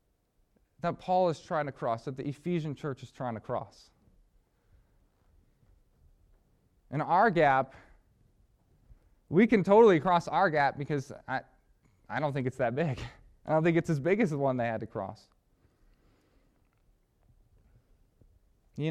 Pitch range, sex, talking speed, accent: 125-200 Hz, male, 145 wpm, American